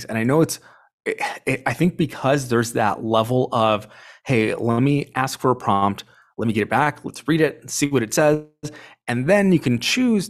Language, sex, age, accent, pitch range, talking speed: English, male, 30-49, American, 110-140 Hz, 215 wpm